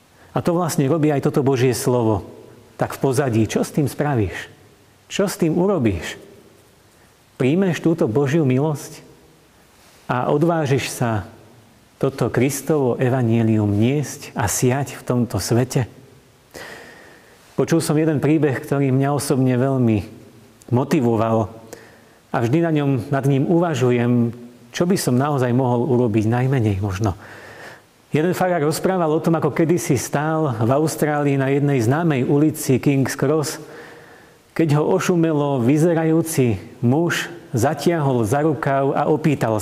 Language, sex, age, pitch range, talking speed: Slovak, male, 40-59, 115-150 Hz, 130 wpm